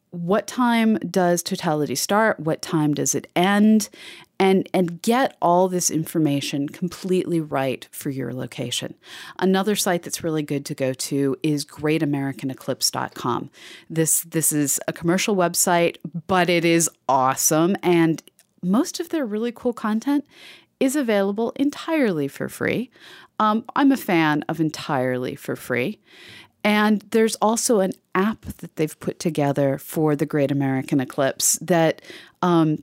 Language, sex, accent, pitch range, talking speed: English, female, American, 160-210 Hz, 140 wpm